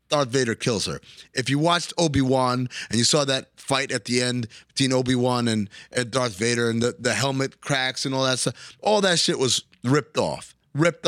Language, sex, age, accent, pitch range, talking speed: English, male, 30-49, American, 115-135 Hz, 200 wpm